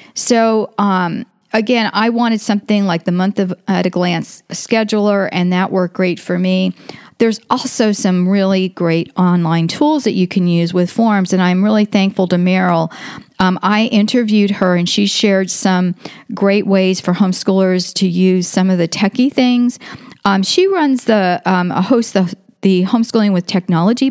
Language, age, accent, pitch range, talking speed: English, 40-59, American, 180-225 Hz, 165 wpm